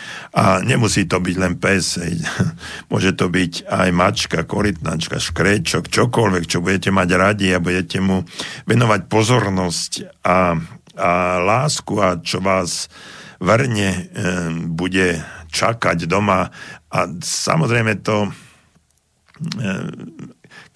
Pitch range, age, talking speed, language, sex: 90-110 Hz, 50-69, 110 wpm, Slovak, male